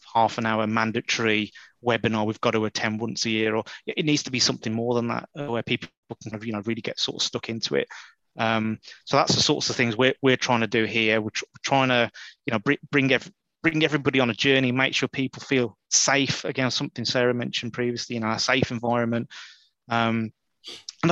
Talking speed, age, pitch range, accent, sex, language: 220 wpm, 30-49, 115-135 Hz, British, male, English